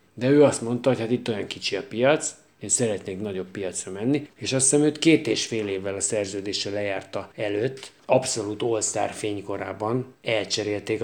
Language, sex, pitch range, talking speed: Hungarian, male, 105-145 Hz, 175 wpm